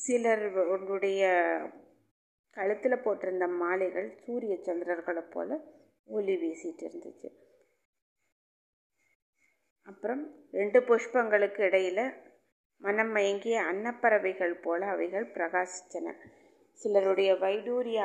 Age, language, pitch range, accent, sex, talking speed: 30-49, Tamil, 185-230 Hz, native, female, 75 wpm